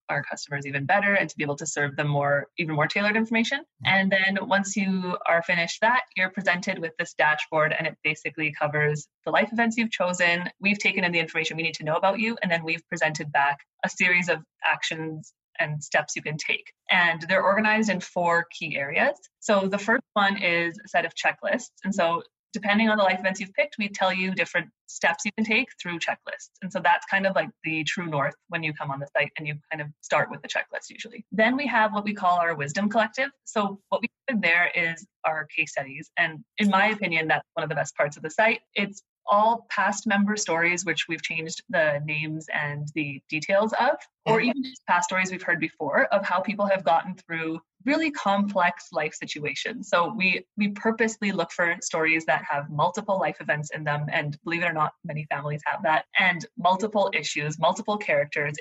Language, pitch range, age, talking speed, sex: English, 160-205 Hz, 30-49, 215 wpm, female